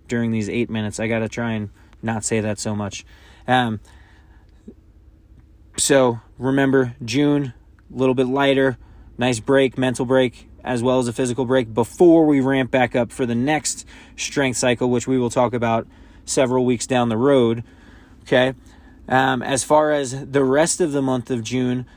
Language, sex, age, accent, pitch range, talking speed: English, male, 20-39, American, 110-140 Hz, 175 wpm